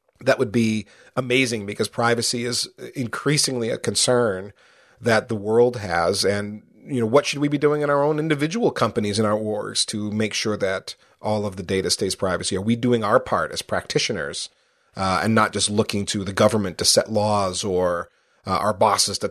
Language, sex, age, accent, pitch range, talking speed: English, male, 40-59, American, 105-125 Hz, 195 wpm